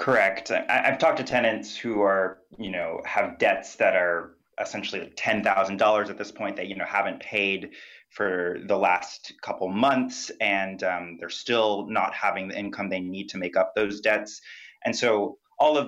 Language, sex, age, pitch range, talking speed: English, male, 30-49, 90-105 Hz, 180 wpm